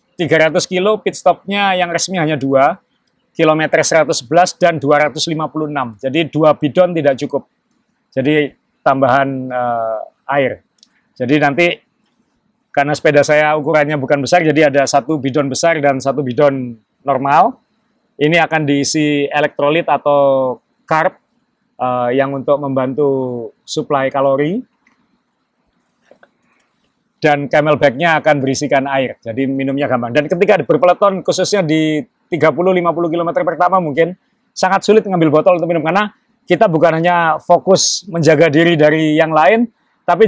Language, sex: Indonesian, male